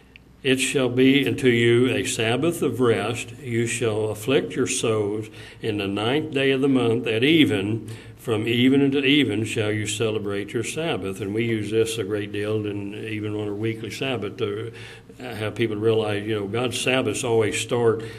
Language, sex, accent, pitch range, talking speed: English, male, American, 100-120 Hz, 180 wpm